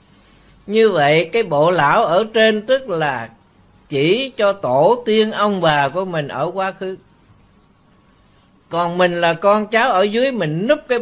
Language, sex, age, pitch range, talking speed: Vietnamese, male, 20-39, 160-215 Hz, 165 wpm